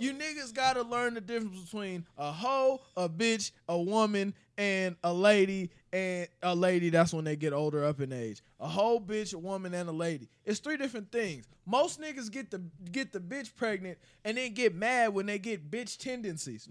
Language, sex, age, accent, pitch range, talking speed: English, male, 20-39, American, 195-270 Hz, 200 wpm